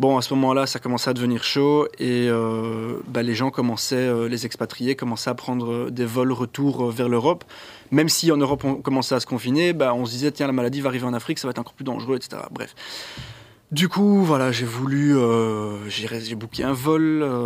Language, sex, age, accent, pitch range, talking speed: French, male, 20-39, French, 120-140 Hz, 225 wpm